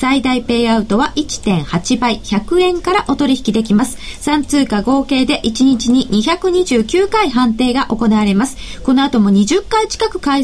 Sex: female